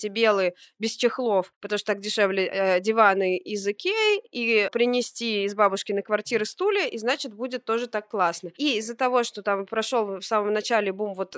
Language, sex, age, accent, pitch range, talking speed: Russian, female, 20-39, native, 210-260 Hz, 185 wpm